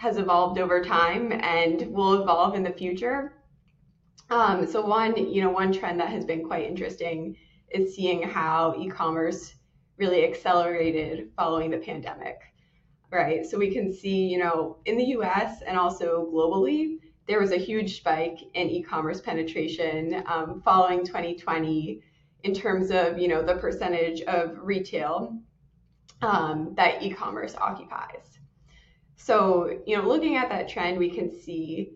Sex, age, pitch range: female, 20-39, 165-195 Hz